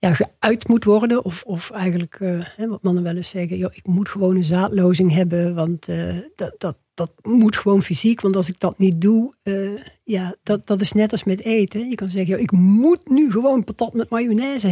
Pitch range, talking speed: 185-240 Hz, 220 wpm